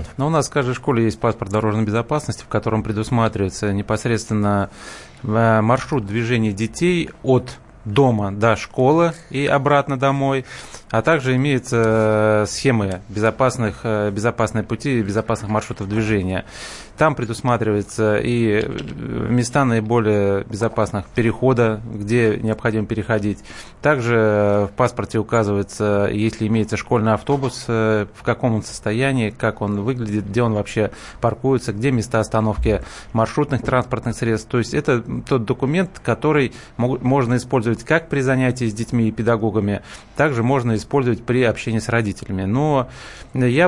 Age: 20-39